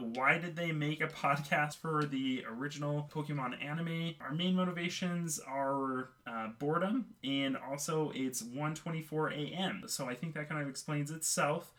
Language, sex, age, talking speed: English, male, 20-39, 155 wpm